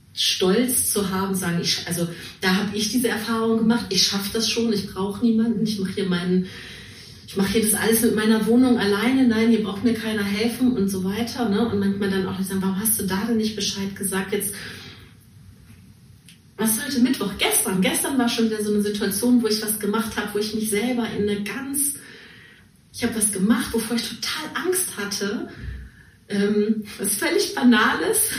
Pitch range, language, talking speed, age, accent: 200-235 Hz, German, 190 wpm, 30-49, German